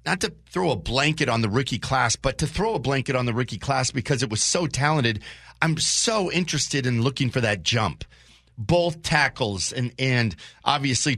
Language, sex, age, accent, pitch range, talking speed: English, male, 40-59, American, 115-150 Hz, 195 wpm